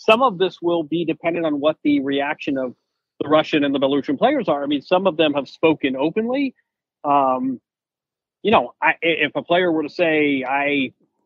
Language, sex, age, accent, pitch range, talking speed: English, male, 40-59, American, 150-225 Hz, 195 wpm